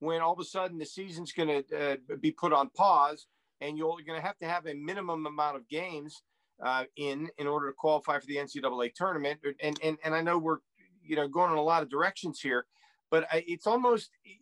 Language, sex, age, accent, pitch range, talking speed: English, male, 50-69, American, 160-210 Hz, 220 wpm